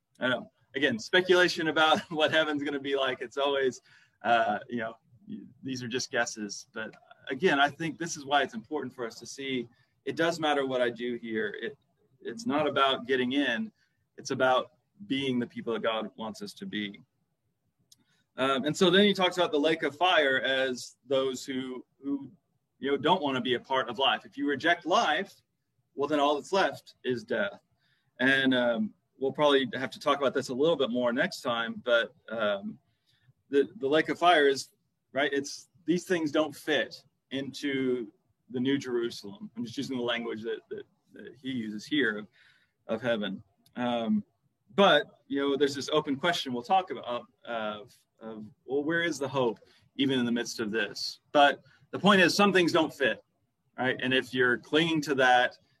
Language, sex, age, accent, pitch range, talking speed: English, male, 30-49, American, 125-155 Hz, 190 wpm